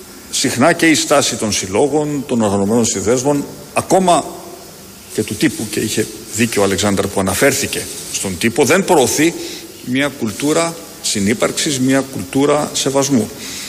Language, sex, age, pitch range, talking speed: Greek, male, 50-69, 110-140 Hz, 130 wpm